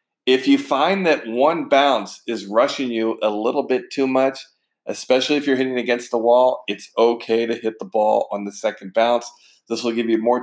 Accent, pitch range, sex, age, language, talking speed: American, 115-135 Hz, male, 40-59, English, 205 wpm